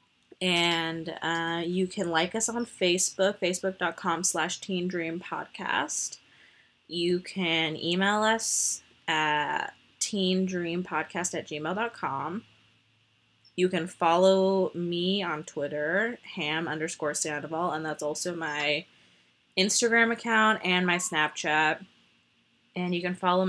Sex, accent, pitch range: female, American, 160-215 Hz